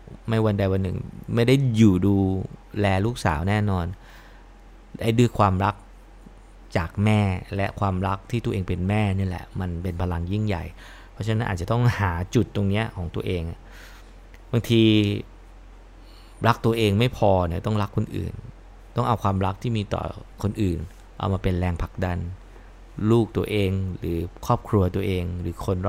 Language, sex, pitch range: English, male, 95-110 Hz